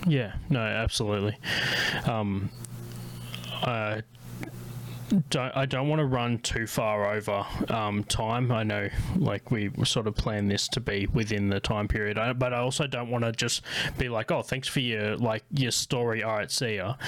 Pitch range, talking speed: 105-135 Hz, 180 wpm